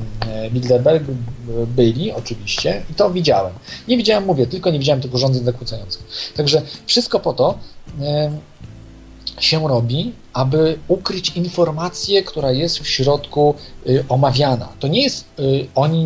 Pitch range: 125-170 Hz